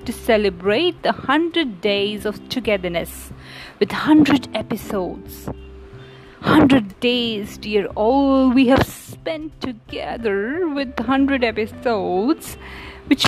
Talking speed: 100 wpm